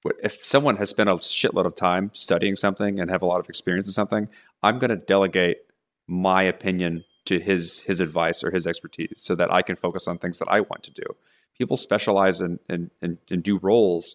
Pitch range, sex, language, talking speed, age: 90-100 Hz, male, English, 210 wpm, 30-49